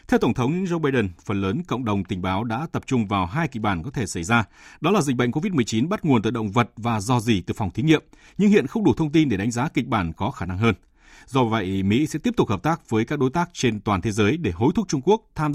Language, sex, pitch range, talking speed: Vietnamese, male, 100-145 Hz, 295 wpm